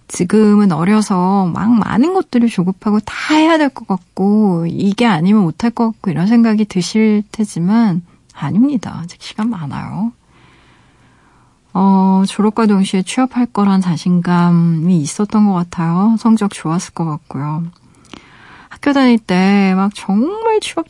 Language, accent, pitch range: Korean, native, 180-235 Hz